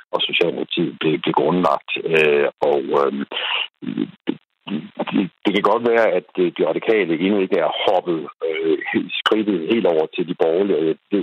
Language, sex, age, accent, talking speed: Danish, male, 60-79, native, 150 wpm